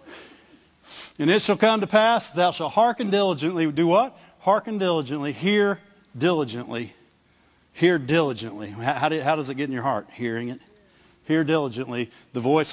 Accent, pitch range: American, 155-215 Hz